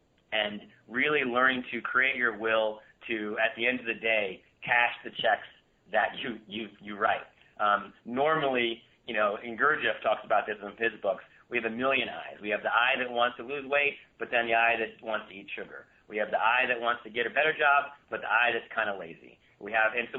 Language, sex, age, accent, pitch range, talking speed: English, male, 30-49, American, 105-125 Hz, 235 wpm